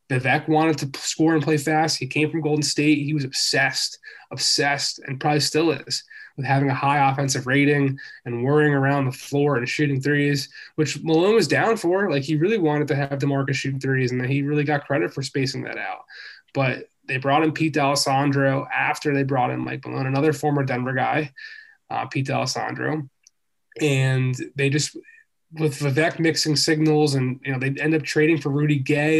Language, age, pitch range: English, 20-39, 140-155 Hz